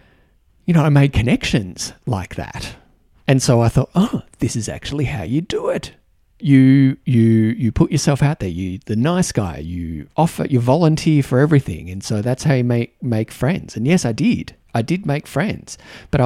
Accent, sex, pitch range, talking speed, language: Australian, male, 105-145 Hz, 195 wpm, English